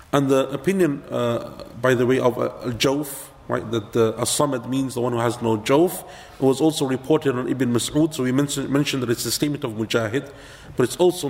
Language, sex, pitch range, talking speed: English, male, 115-145 Hz, 210 wpm